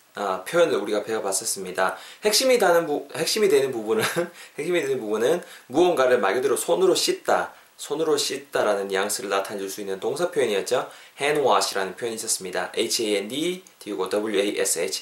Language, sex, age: Korean, male, 20-39